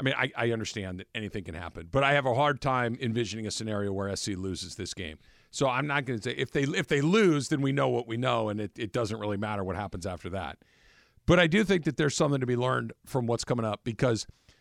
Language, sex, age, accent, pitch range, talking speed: English, male, 50-69, American, 110-145 Hz, 265 wpm